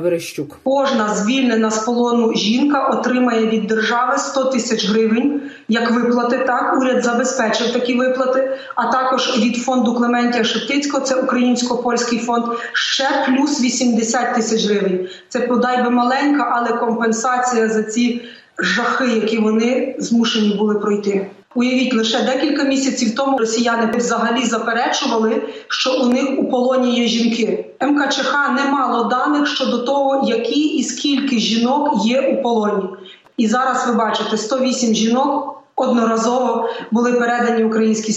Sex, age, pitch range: female, 30-49, 195-250 Hz